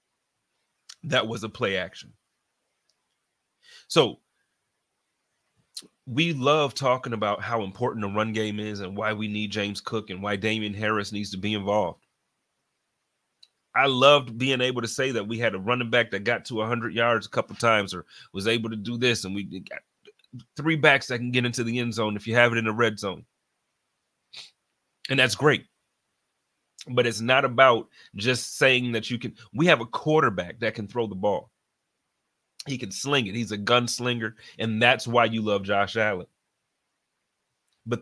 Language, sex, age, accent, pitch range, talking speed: English, male, 30-49, American, 105-125 Hz, 180 wpm